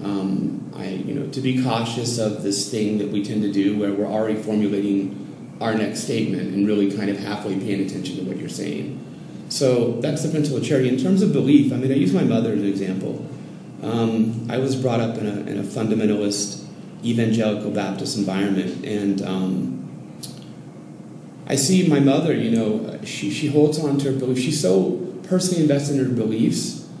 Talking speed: 195 wpm